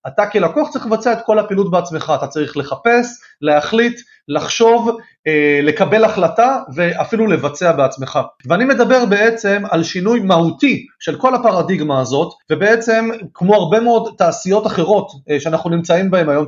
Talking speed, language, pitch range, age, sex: 140 wpm, Hebrew, 160-220 Hz, 30-49, male